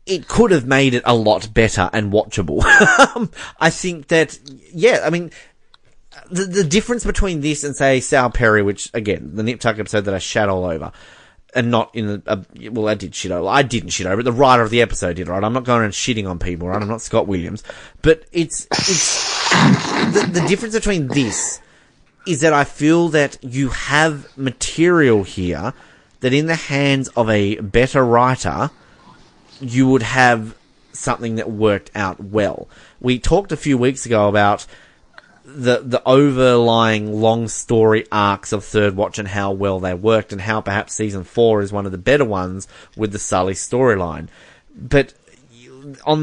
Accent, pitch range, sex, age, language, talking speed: Australian, 105-135 Hz, male, 30-49, English, 180 wpm